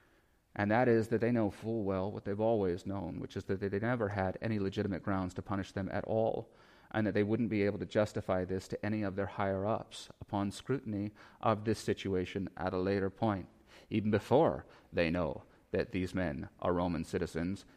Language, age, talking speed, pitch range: English, 30-49, 200 wpm, 100-130 Hz